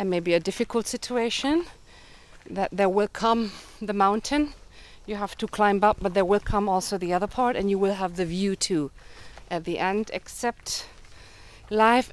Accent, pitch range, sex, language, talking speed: German, 155-205 Hz, female, English, 175 wpm